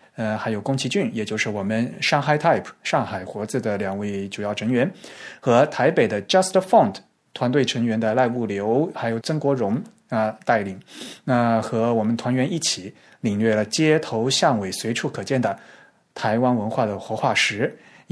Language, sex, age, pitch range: Chinese, male, 20-39, 110-150 Hz